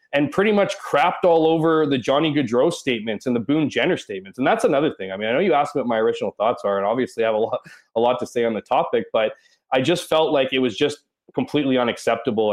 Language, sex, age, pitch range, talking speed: English, male, 20-39, 125-185 Hz, 255 wpm